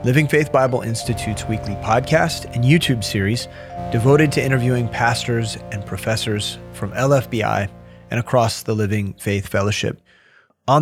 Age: 30-49